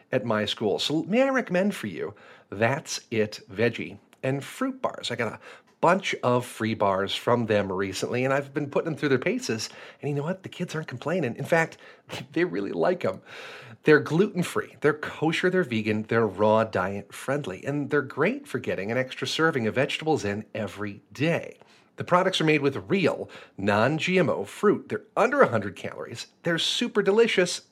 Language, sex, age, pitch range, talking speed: English, male, 40-59, 110-180 Hz, 180 wpm